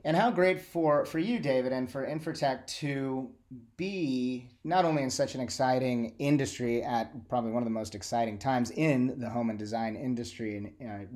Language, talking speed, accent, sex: English, 185 wpm, American, male